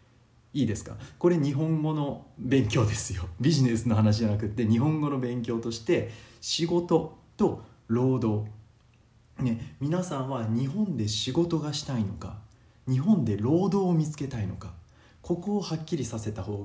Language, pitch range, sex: Japanese, 110-140 Hz, male